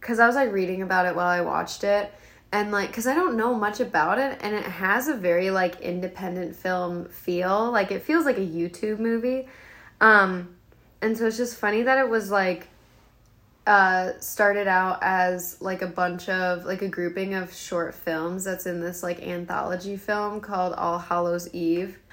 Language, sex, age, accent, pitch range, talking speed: English, female, 10-29, American, 180-210 Hz, 190 wpm